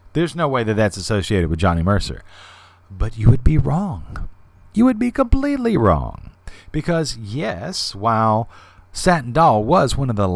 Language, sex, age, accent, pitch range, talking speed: English, male, 40-59, American, 90-120 Hz, 160 wpm